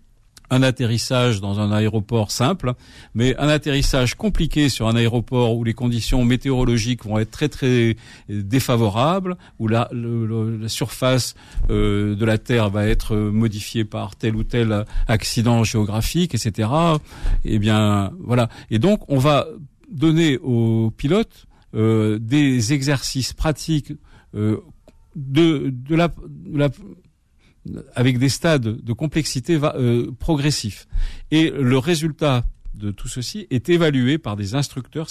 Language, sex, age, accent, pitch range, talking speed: French, male, 50-69, French, 110-140 Hz, 140 wpm